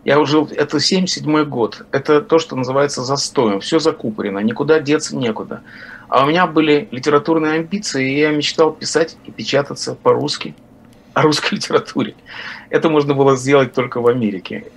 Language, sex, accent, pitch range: Russian, male, native, 120-165 Hz